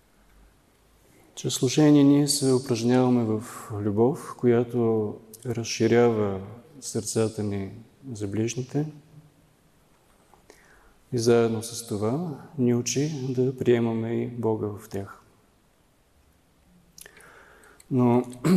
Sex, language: male, Bulgarian